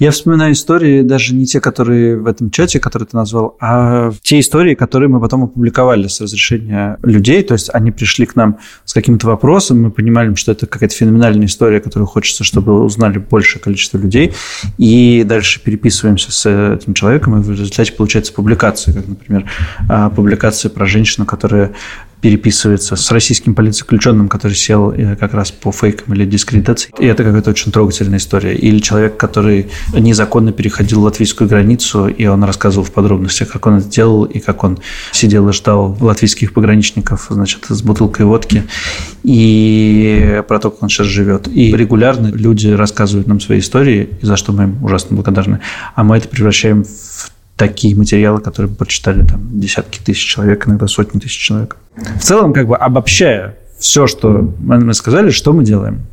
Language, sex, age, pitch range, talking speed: Russian, male, 20-39, 100-115 Hz, 170 wpm